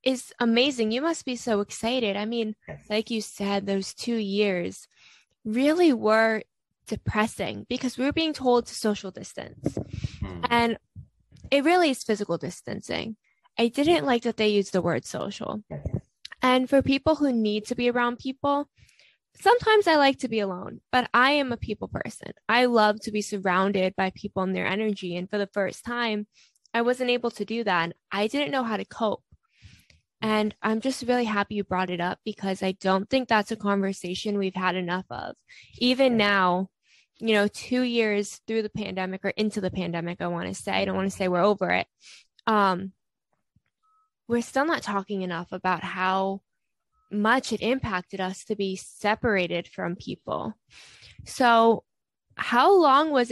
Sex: female